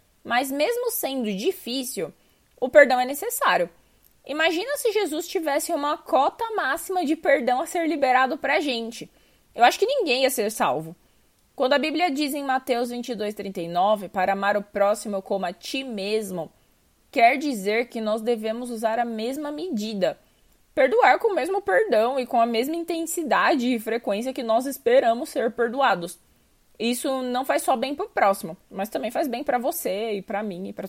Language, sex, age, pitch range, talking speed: Portuguese, female, 20-39, 225-305 Hz, 175 wpm